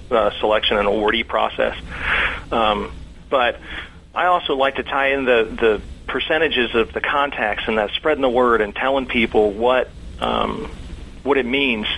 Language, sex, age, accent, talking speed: English, male, 40-59, American, 160 wpm